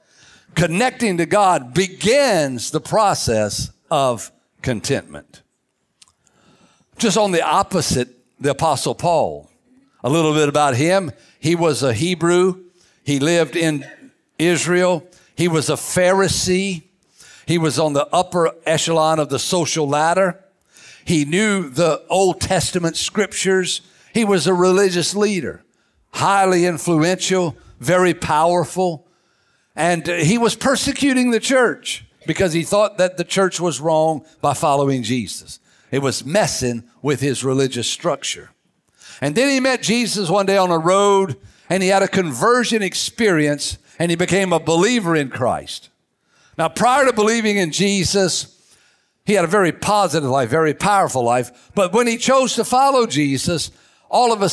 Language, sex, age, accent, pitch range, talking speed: English, male, 60-79, American, 150-195 Hz, 140 wpm